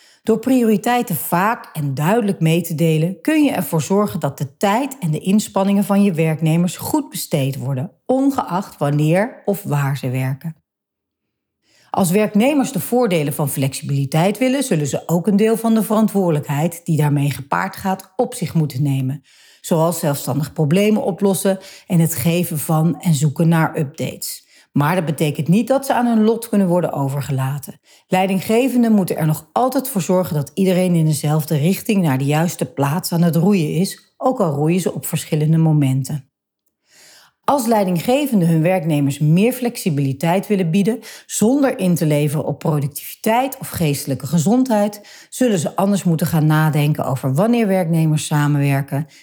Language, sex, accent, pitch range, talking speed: Dutch, female, Dutch, 150-205 Hz, 160 wpm